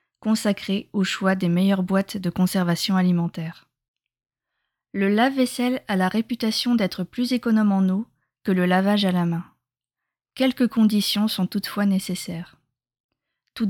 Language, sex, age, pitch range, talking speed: French, female, 20-39, 185-220 Hz, 135 wpm